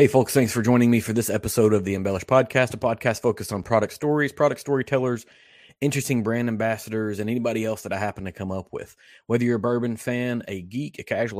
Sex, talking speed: male, 225 wpm